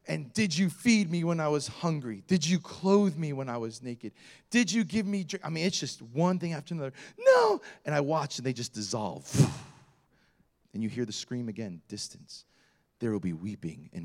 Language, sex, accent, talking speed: English, male, American, 215 wpm